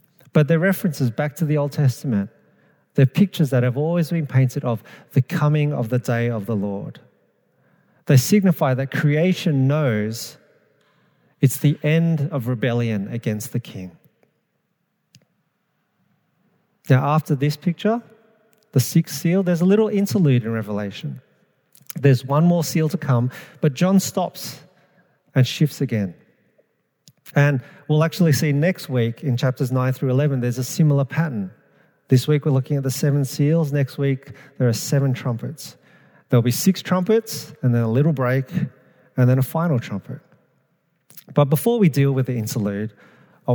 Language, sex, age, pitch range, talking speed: English, male, 40-59, 125-165 Hz, 155 wpm